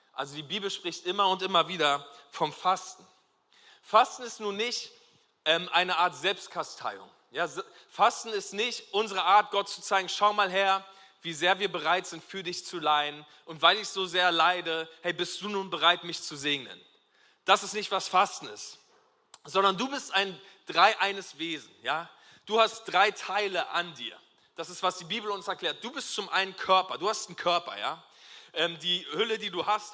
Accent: German